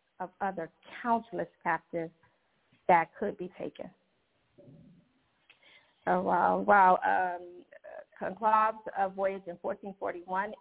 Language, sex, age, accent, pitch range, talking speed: English, female, 40-59, American, 180-210 Hz, 100 wpm